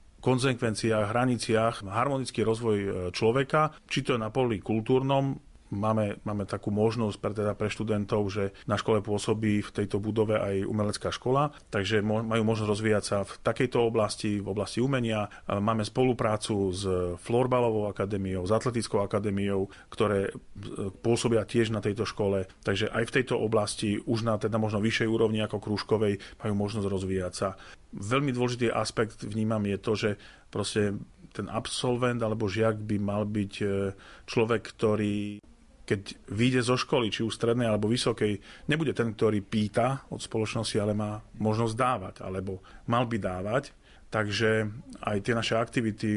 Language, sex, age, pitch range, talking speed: Slovak, male, 40-59, 100-115 Hz, 150 wpm